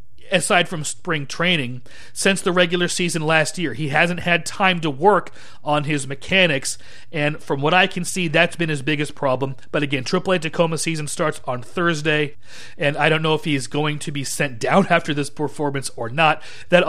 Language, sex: English, male